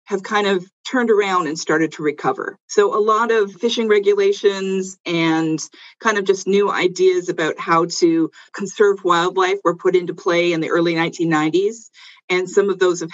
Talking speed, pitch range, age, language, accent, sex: 180 wpm, 165-225 Hz, 40-59, English, American, female